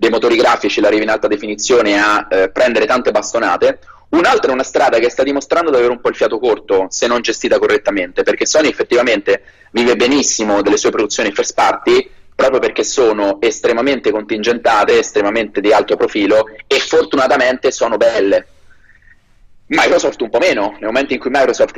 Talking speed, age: 175 wpm, 30-49